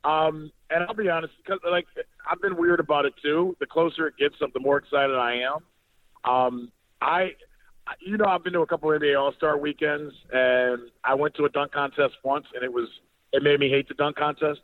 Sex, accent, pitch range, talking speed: male, American, 130-165 Hz, 215 wpm